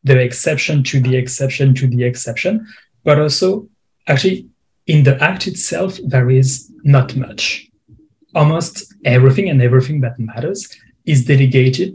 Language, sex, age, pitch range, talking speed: English, male, 30-49, 125-145 Hz, 135 wpm